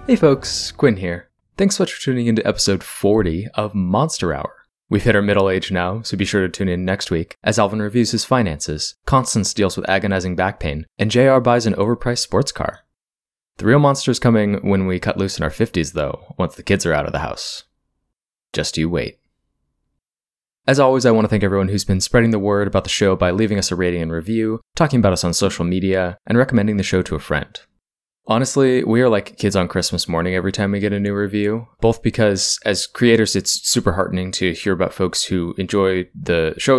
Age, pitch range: 20-39, 90-115 Hz